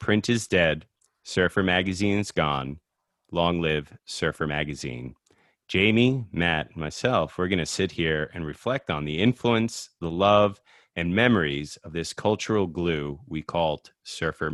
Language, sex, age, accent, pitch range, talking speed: English, male, 30-49, American, 80-105 Hz, 150 wpm